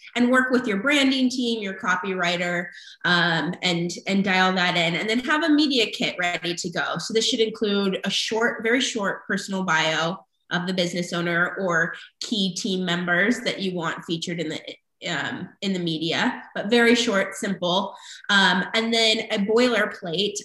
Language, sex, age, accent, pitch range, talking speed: English, female, 20-39, American, 180-225 Hz, 175 wpm